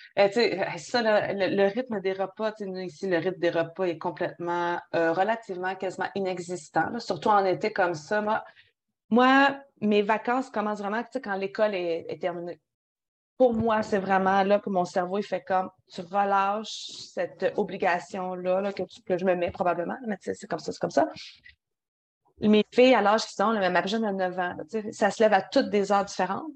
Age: 30-49